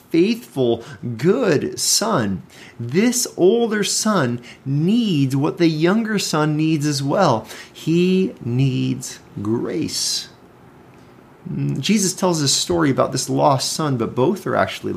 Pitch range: 110-170 Hz